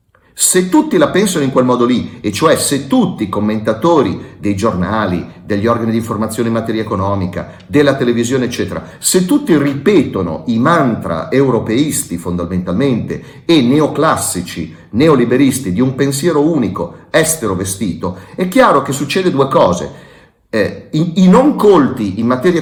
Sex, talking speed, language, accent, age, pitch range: male, 145 wpm, Italian, native, 40-59, 105-150 Hz